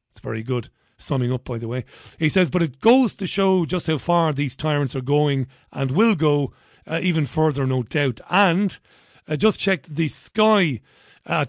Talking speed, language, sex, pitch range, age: 200 wpm, English, male, 130-175 Hz, 40-59